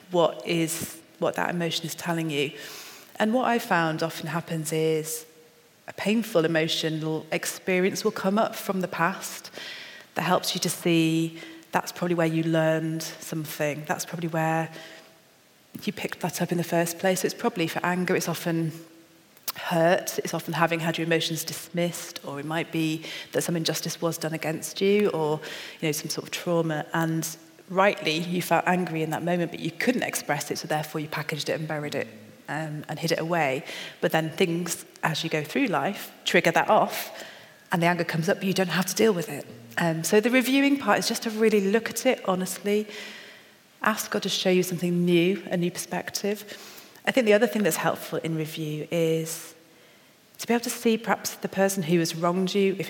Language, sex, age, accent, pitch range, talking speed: English, female, 30-49, British, 160-190 Hz, 200 wpm